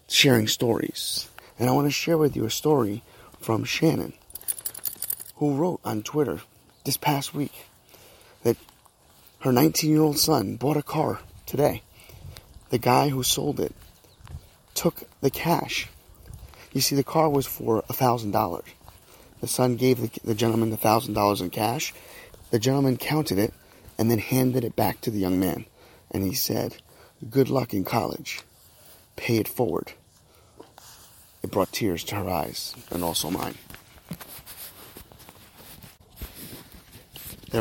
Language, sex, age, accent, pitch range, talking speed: English, male, 30-49, American, 100-130 Hz, 145 wpm